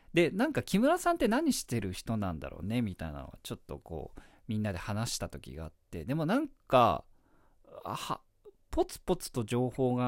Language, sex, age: Japanese, male, 40-59